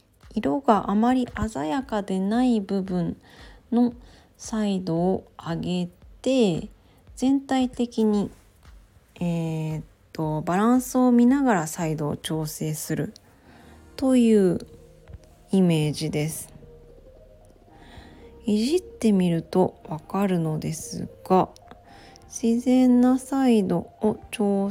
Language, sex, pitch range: Japanese, female, 165-235 Hz